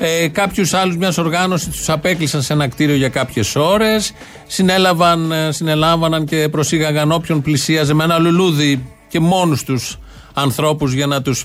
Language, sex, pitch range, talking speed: Greek, male, 145-190 Hz, 150 wpm